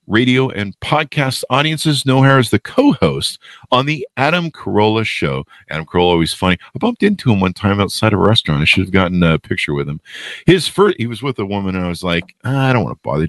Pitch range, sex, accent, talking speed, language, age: 95-145 Hz, male, American, 225 wpm, English, 50-69